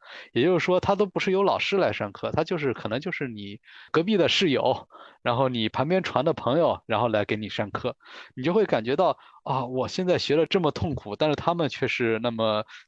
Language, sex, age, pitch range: Chinese, male, 20-39, 110-165 Hz